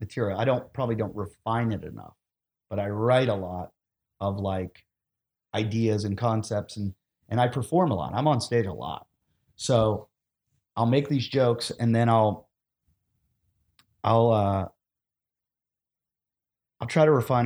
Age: 30-49